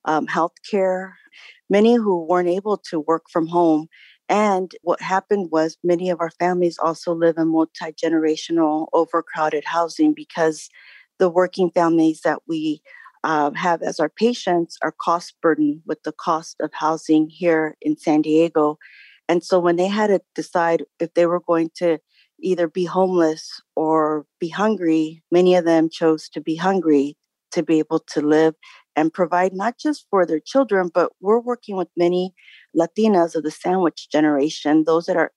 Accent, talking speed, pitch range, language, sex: American, 165 wpm, 155-180 Hz, English, female